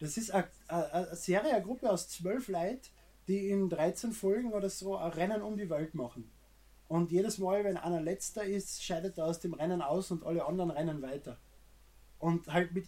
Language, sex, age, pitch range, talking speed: German, male, 20-39, 165-200 Hz, 190 wpm